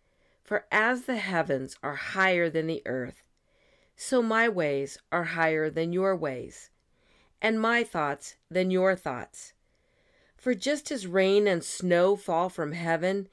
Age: 50-69